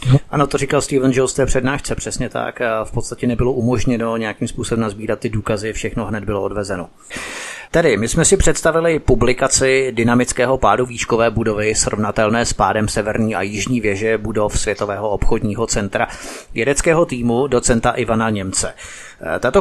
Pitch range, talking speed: 110-130 Hz, 155 wpm